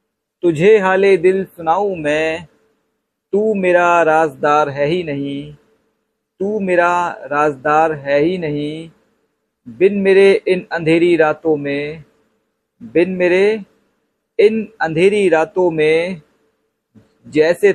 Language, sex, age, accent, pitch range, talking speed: Hindi, male, 50-69, native, 150-190 Hz, 100 wpm